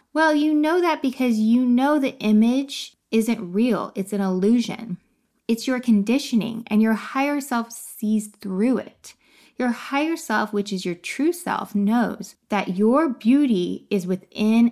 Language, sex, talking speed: English, female, 155 wpm